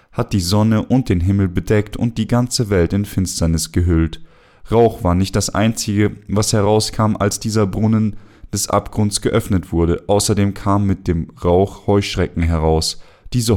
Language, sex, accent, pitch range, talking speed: German, male, German, 90-110 Hz, 160 wpm